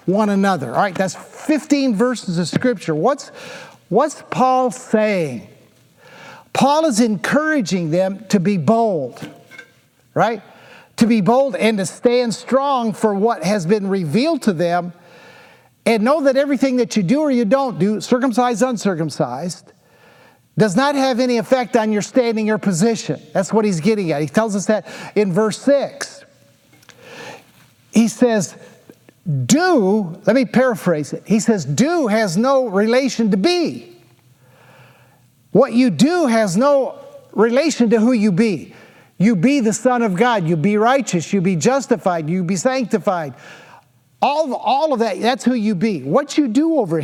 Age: 50-69